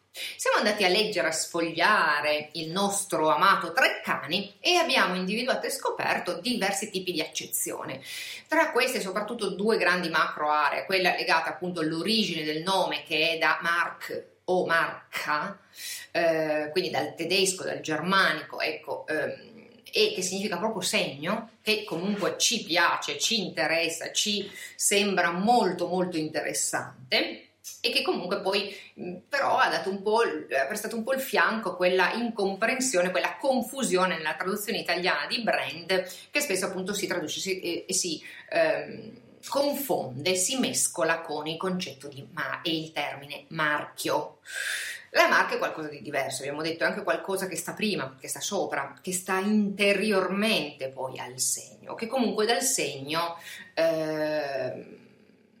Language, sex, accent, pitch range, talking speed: Italian, female, native, 165-215 Hz, 140 wpm